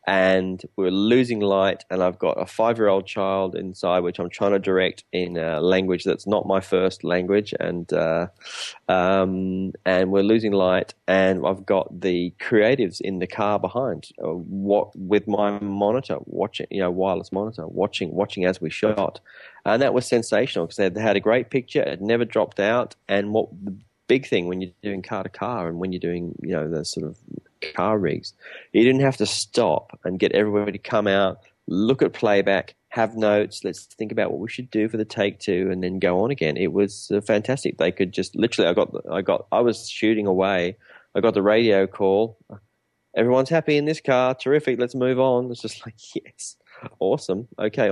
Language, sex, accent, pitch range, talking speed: English, male, Australian, 90-110 Hz, 210 wpm